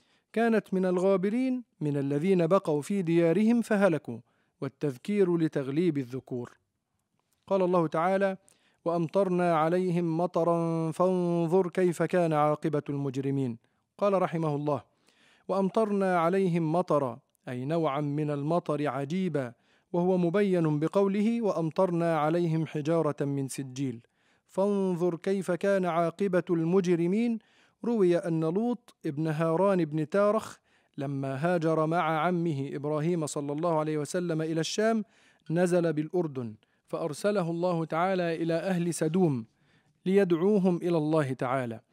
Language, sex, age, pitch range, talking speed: Arabic, male, 40-59, 150-185 Hz, 110 wpm